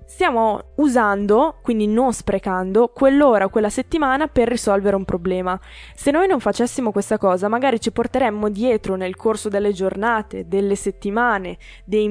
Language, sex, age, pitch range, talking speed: Italian, female, 10-29, 195-225 Hz, 150 wpm